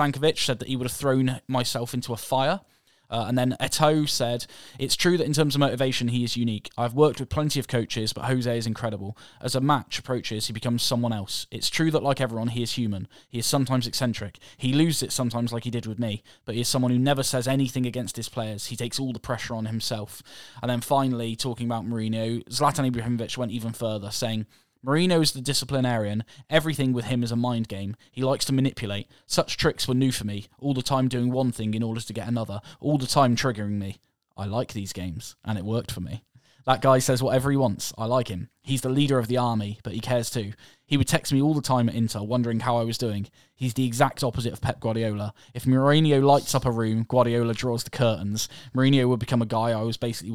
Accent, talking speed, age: British, 235 wpm, 10-29